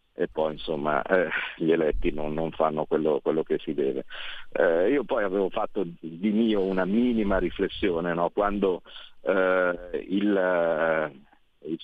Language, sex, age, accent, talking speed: Italian, male, 50-69, native, 145 wpm